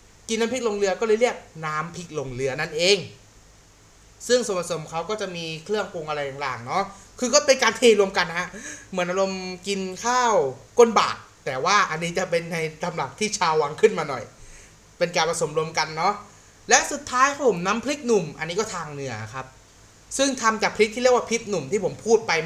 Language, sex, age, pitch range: Thai, male, 30-49, 160-225 Hz